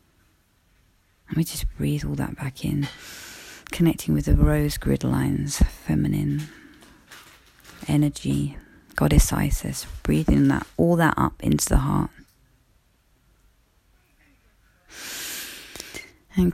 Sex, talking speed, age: female, 100 wpm, 30-49